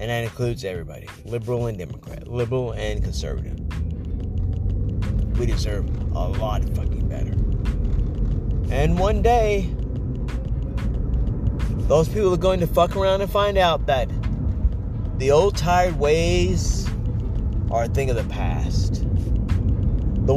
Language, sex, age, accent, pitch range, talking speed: English, male, 30-49, American, 95-120 Hz, 120 wpm